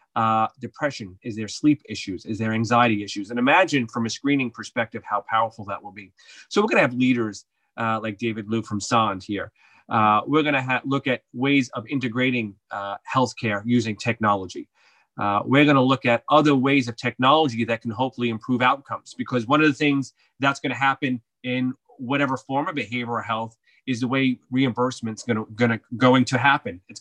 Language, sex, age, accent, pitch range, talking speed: English, male, 30-49, American, 110-135 Hz, 190 wpm